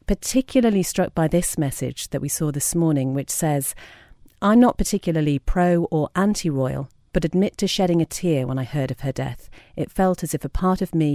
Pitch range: 145-175 Hz